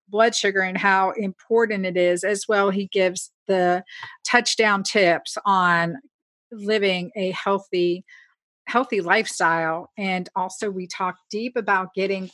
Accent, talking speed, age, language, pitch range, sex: American, 130 wpm, 50-69, English, 190-225 Hz, female